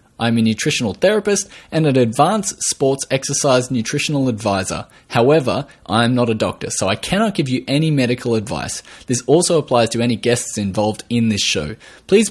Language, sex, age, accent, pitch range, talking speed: English, male, 20-39, Australian, 110-150 Hz, 170 wpm